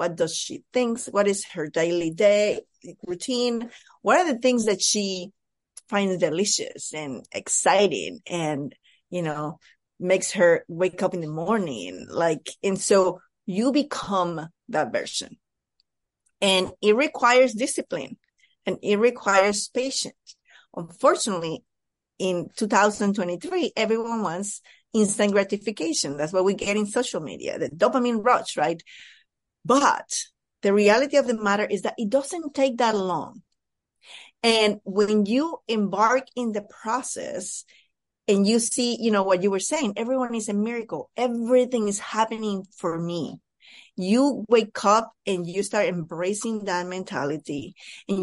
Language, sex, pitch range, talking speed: English, female, 185-235 Hz, 140 wpm